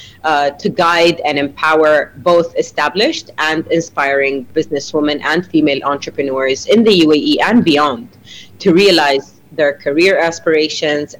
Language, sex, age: English, female, 30-49